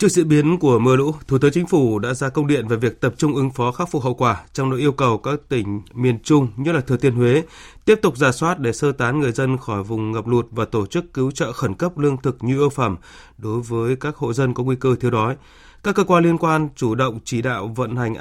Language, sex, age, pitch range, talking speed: Vietnamese, male, 20-39, 115-145 Hz, 275 wpm